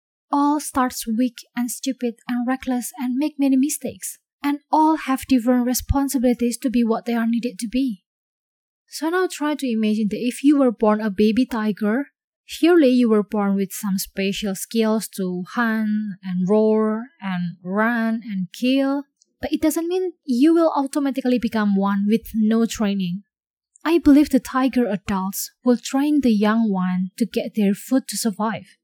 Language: English